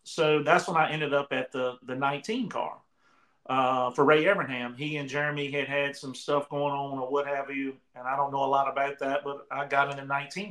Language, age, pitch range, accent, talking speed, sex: English, 40-59, 140-165 Hz, American, 240 wpm, male